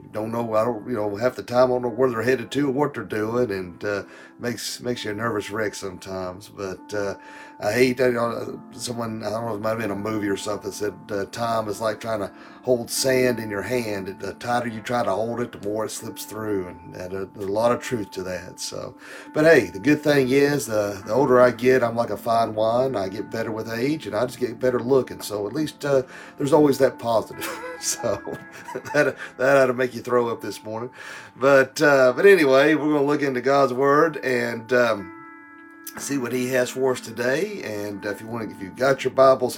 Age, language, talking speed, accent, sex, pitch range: 40-59, English, 240 wpm, American, male, 105-140 Hz